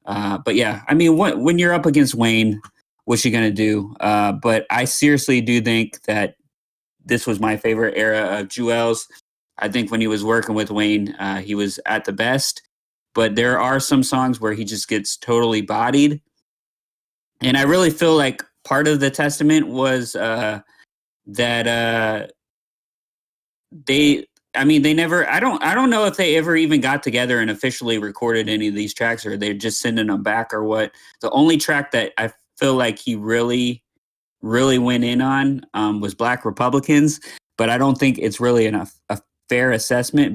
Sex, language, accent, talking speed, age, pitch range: male, English, American, 185 wpm, 20-39, 110-135 Hz